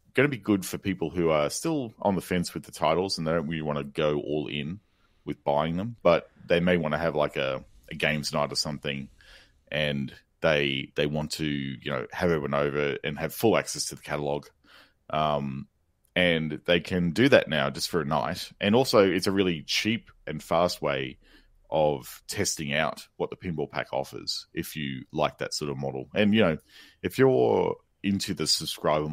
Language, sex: English, male